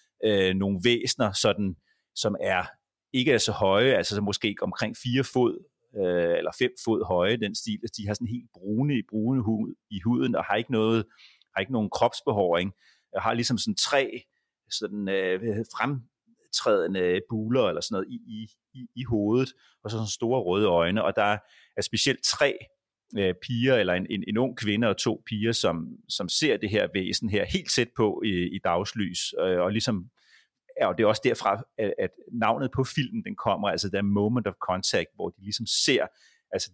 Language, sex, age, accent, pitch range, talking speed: Danish, male, 30-49, native, 100-125 Hz, 195 wpm